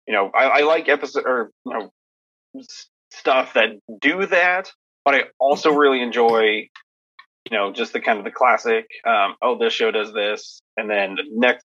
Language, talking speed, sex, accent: English, 185 wpm, male, American